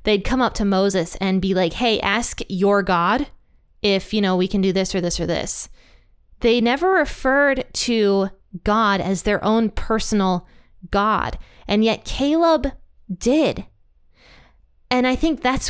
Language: English